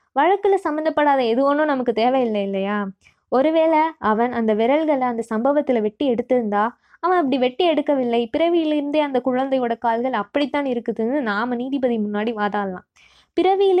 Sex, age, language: female, 20-39, Tamil